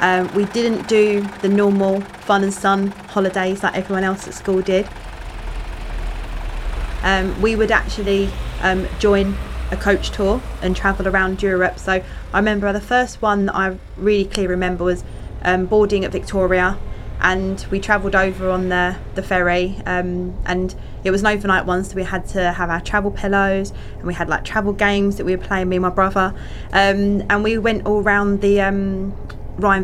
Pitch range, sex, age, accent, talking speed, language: 180-200 Hz, female, 20-39, British, 185 wpm, English